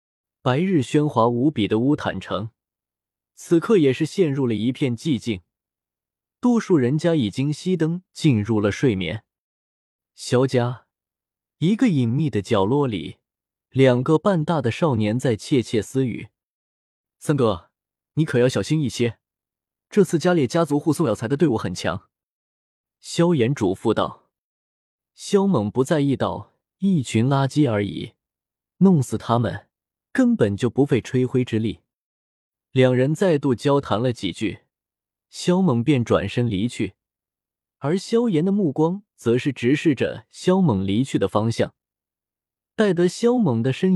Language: Chinese